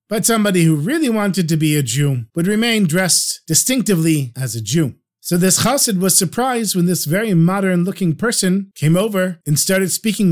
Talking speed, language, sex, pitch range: 180 wpm, English, male, 160-205 Hz